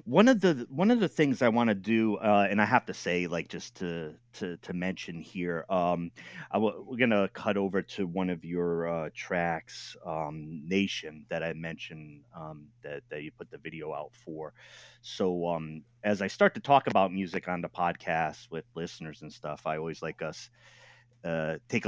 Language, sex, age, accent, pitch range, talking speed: English, male, 30-49, American, 80-110 Hz, 195 wpm